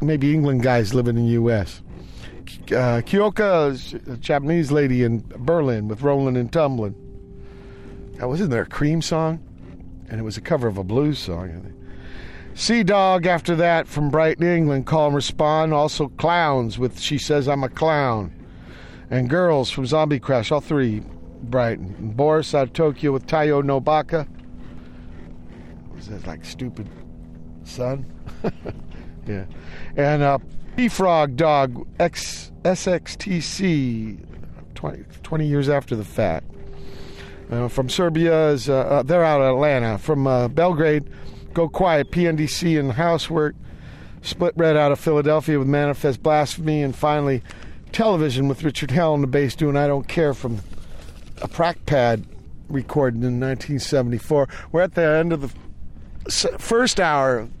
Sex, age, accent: male, 50-69, American